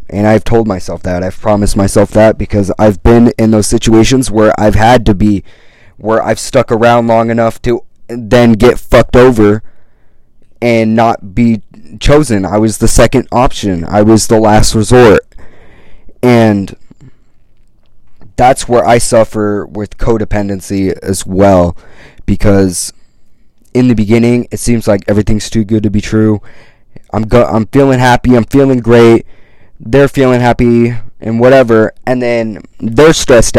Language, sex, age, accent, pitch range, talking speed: English, male, 20-39, American, 100-120 Hz, 150 wpm